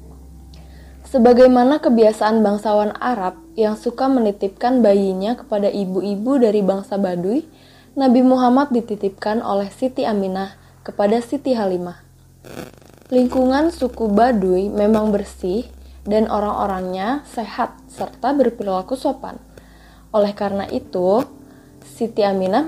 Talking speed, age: 100 wpm, 20-39